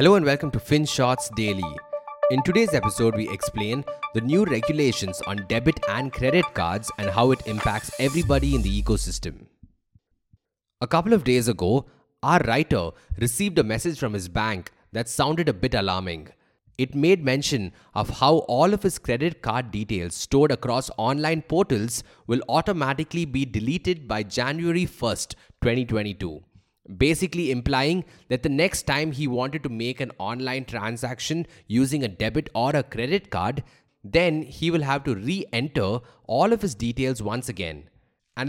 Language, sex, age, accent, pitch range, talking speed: English, male, 20-39, Indian, 110-155 Hz, 155 wpm